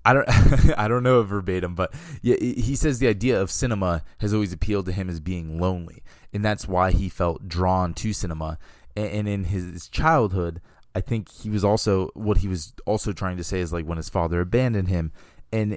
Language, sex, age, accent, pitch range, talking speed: English, male, 20-39, American, 85-100 Hz, 210 wpm